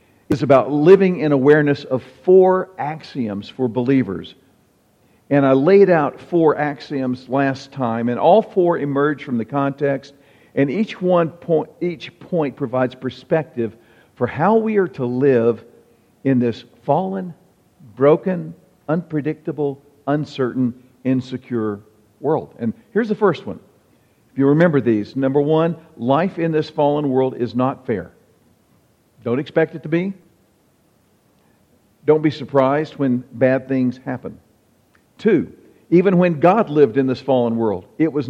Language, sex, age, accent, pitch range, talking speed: English, male, 50-69, American, 125-165 Hz, 140 wpm